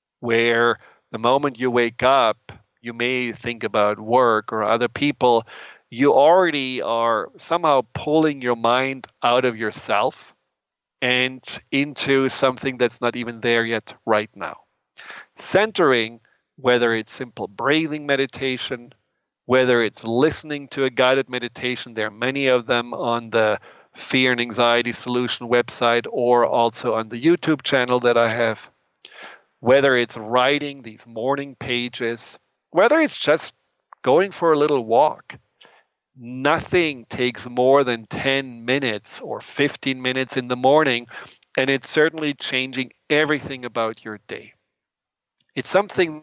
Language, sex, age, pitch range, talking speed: English, male, 40-59, 120-135 Hz, 135 wpm